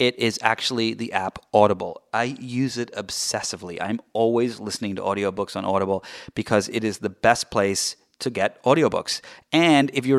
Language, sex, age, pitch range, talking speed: English, male, 30-49, 110-145 Hz, 170 wpm